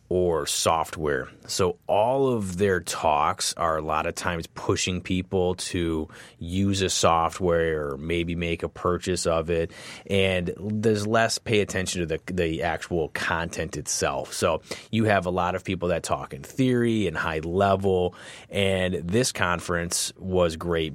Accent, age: American, 30-49